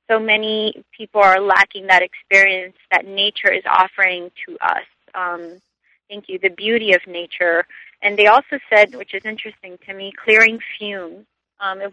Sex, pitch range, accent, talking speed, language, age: female, 180-210 Hz, American, 160 wpm, English, 30-49